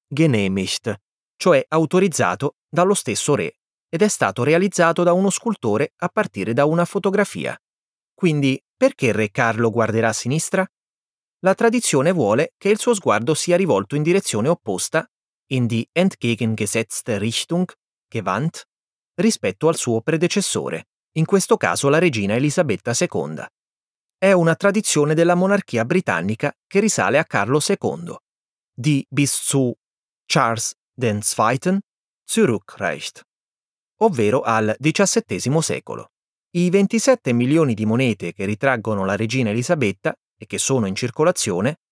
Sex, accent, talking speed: male, native, 125 wpm